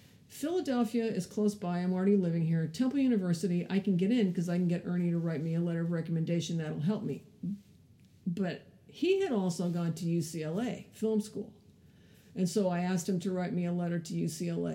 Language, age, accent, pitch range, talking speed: English, 50-69, American, 170-210 Hz, 205 wpm